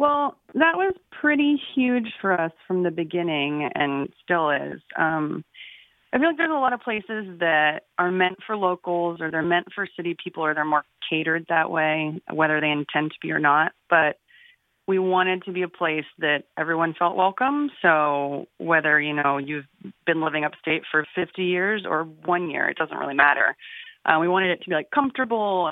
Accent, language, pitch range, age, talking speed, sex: American, English, 160-200 Hz, 30-49, 195 wpm, female